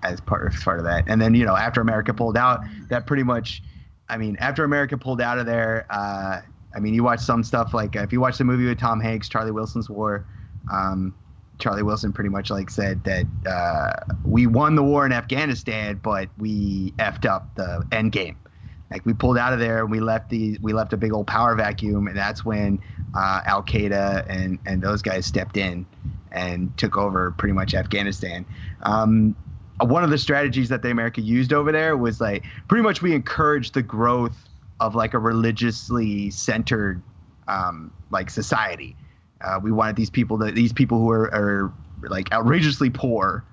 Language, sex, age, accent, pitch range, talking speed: English, male, 30-49, American, 100-120 Hz, 195 wpm